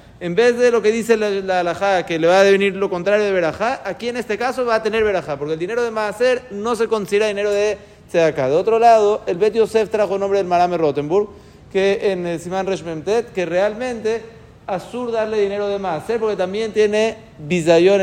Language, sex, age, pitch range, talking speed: Spanish, male, 40-59, 180-220 Hz, 225 wpm